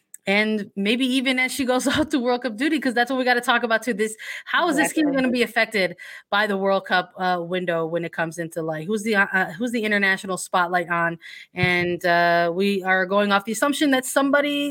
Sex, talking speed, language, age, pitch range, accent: female, 235 wpm, English, 20-39, 185-240 Hz, American